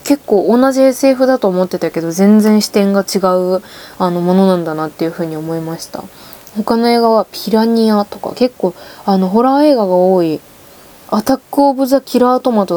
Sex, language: female, Japanese